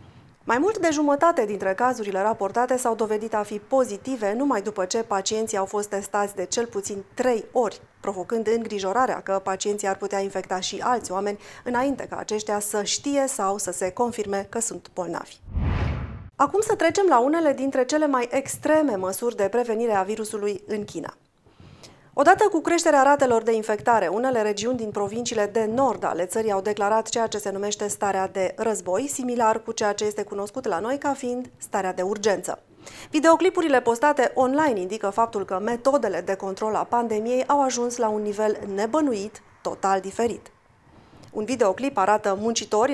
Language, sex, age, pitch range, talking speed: Romanian, female, 30-49, 200-250 Hz, 170 wpm